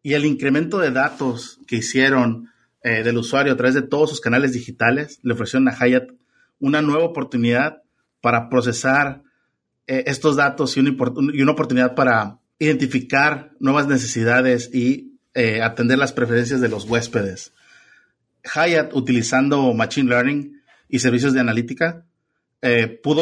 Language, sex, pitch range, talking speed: Spanish, male, 125-140 Hz, 145 wpm